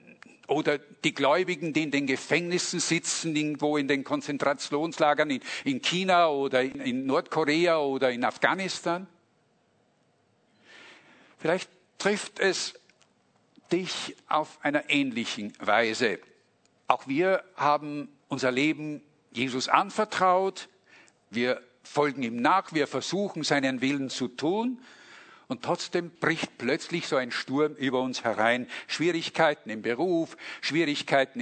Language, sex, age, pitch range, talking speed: German, male, 50-69, 125-170 Hz, 115 wpm